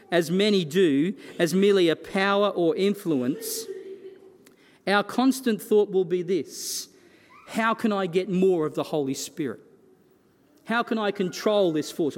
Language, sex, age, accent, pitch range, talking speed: English, male, 40-59, Australian, 155-210 Hz, 150 wpm